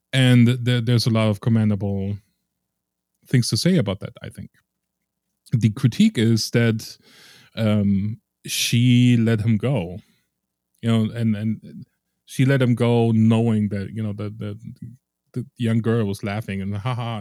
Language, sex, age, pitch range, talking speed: English, male, 20-39, 100-120 Hz, 155 wpm